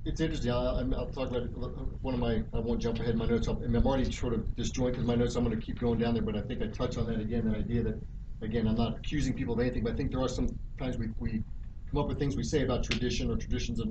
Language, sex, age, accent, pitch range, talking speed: English, male, 40-59, American, 115-130 Hz, 295 wpm